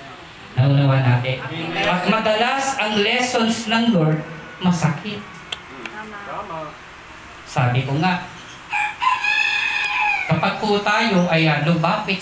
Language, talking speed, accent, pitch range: Filipino, 90 wpm, native, 170-210 Hz